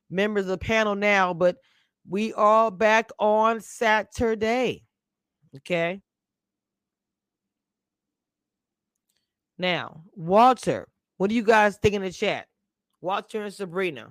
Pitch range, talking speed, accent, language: 165-220 Hz, 105 wpm, American, English